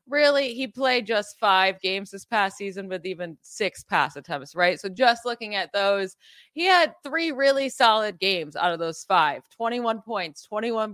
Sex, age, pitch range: female, 20-39, 180-240 Hz